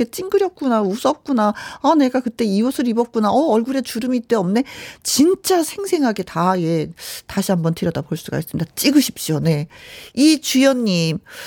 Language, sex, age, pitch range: Korean, female, 40-59, 190-275 Hz